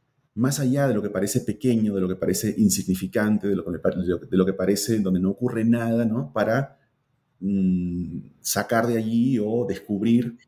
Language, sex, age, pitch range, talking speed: Spanish, male, 30-49, 95-125 Hz, 180 wpm